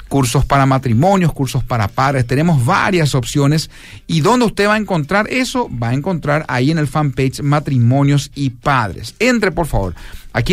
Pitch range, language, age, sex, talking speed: 125-155 Hz, Spanish, 50-69, male, 170 wpm